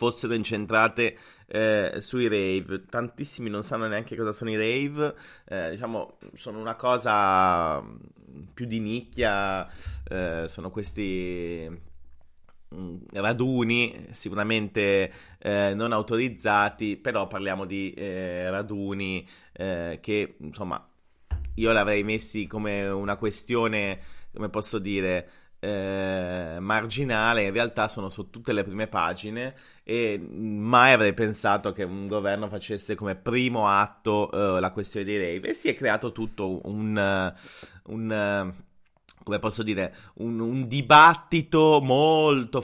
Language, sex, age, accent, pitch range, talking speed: English, male, 30-49, Italian, 100-130 Hz, 120 wpm